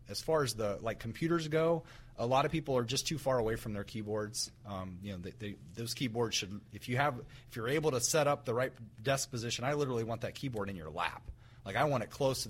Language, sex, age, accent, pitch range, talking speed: English, male, 30-49, American, 110-145 Hz, 250 wpm